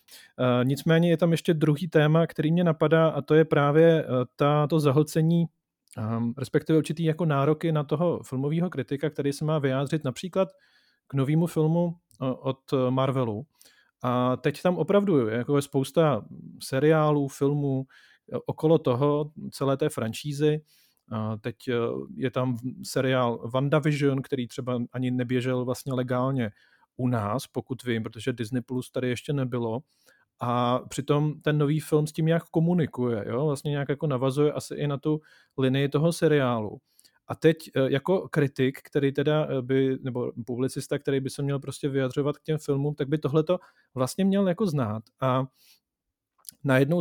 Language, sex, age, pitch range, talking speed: Czech, male, 40-59, 130-155 Hz, 150 wpm